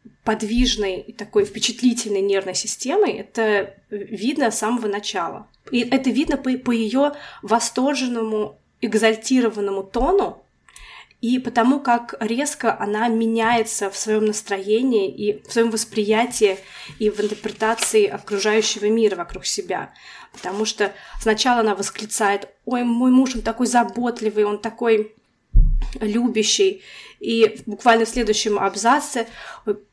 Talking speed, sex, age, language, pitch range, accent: 120 wpm, female, 20-39, Russian, 210-255 Hz, native